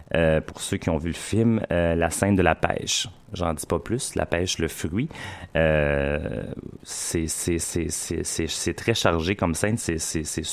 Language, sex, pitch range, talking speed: French, male, 85-105 Hz, 165 wpm